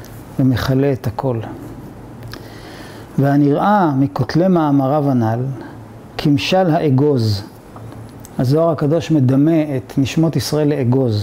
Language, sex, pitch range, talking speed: Hebrew, male, 125-165 Hz, 85 wpm